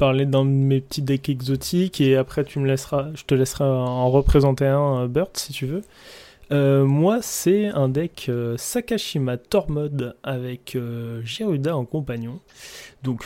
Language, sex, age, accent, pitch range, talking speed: French, male, 20-39, French, 125-145 Hz, 155 wpm